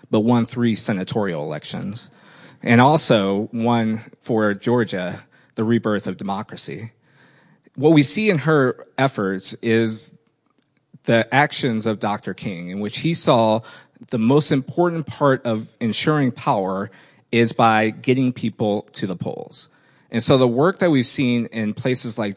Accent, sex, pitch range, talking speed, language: American, male, 110-135 Hz, 145 wpm, English